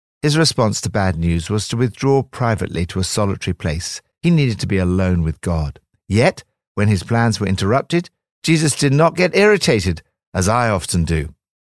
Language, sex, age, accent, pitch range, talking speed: English, male, 50-69, British, 90-130 Hz, 180 wpm